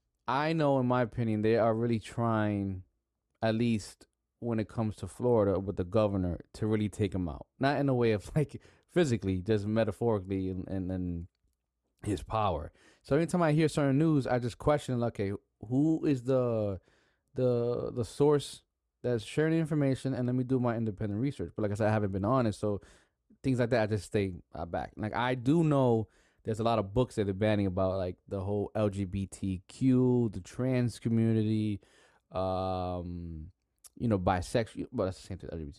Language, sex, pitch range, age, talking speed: English, male, 100-130 Hz, 20-39, 180 wpm